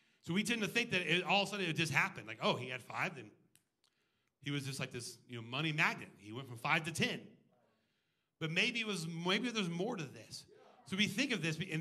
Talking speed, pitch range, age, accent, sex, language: 255 wpm, 155-200 Hz, 40-59, American, male, English